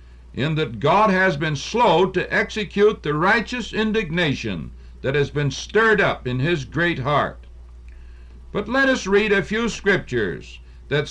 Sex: male